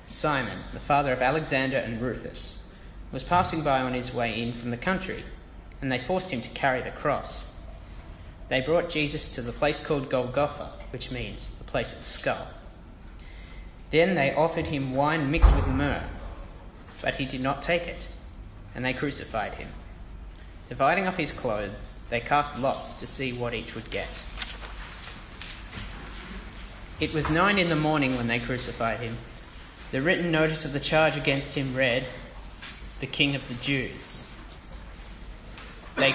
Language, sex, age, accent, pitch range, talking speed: English, male, 30-49, Australian, 110-155 Hz, 160 wpm